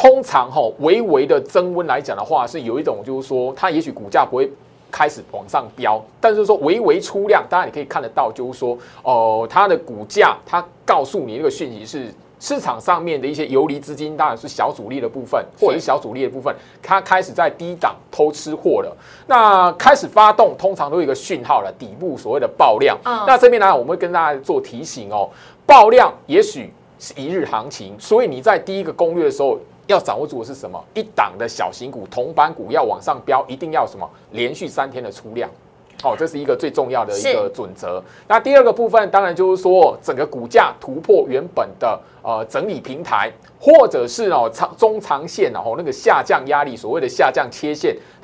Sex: male